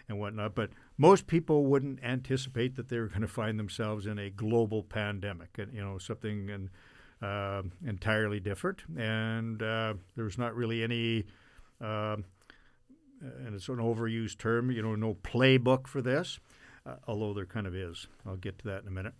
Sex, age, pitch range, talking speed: male, 50-69, 105-120 Hz, 180 wpm